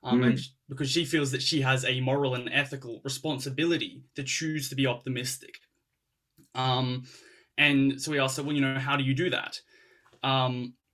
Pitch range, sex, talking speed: 125-145 Hz, male, 175 wpm